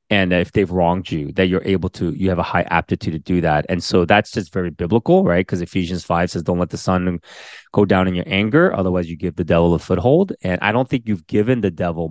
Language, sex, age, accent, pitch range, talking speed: English, male, 20-39, American, 85-105 Hz, 260 wpm